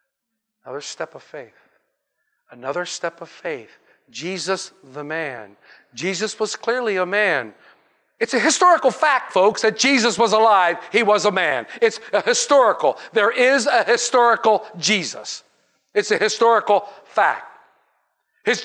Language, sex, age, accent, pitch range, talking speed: English, male, 50-69, American, 205-285 Hz, 135 wpm